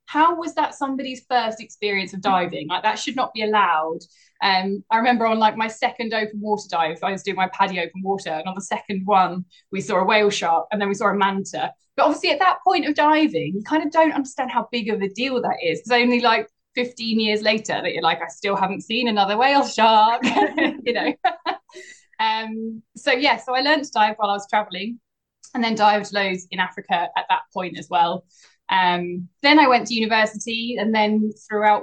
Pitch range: 190-240 Hz